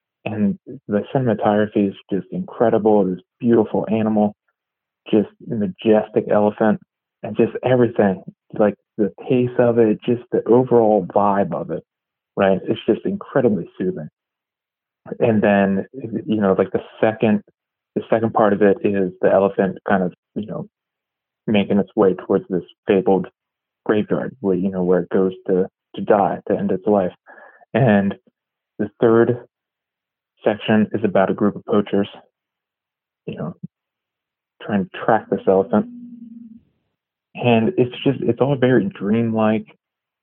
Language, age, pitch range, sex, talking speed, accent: English, 30-49, 100-120 Hz, male, 140 wpm, American